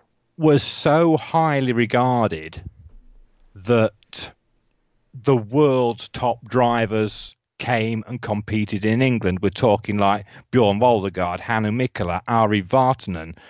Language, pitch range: English, 100-125 Hz